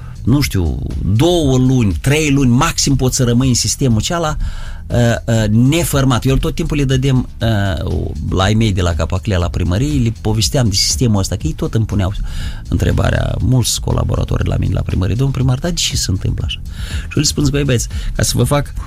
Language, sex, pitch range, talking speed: Romanian, male, 95-130 Hz, 205 wpm